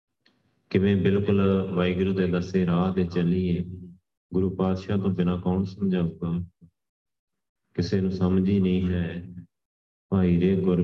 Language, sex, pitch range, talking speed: Punjabi, male, 85-90 Hz, 135 wpm